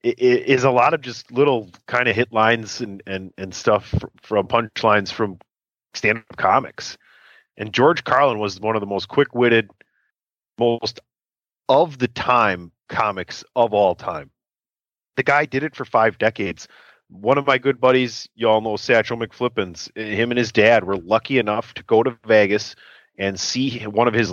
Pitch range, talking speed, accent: 105-130 Hz, 175 wpm, American